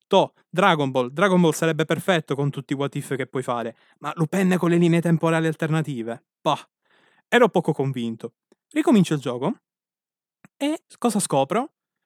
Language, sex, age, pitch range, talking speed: Italian, male, 20-39, 140-200 Hz, 160 wpm